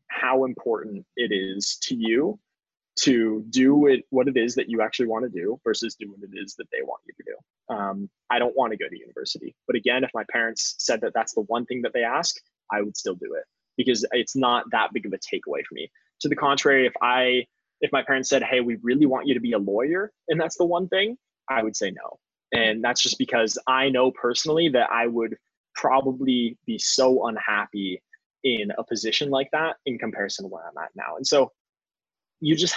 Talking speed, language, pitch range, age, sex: 225 wpm, English, 110-160 Hz, 20-39, male